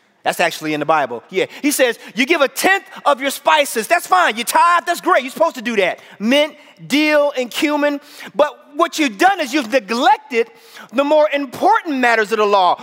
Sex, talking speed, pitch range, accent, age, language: male, 205 wpm, 220-310 Hz, American, 30-49, English